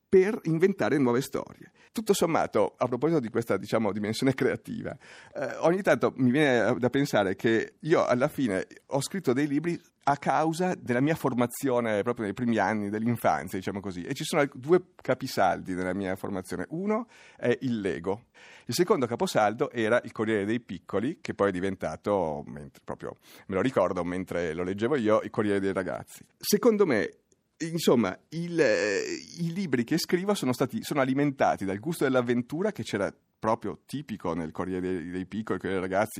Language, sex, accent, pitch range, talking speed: Italian, male, native, 100-145 Hz, 170 wpm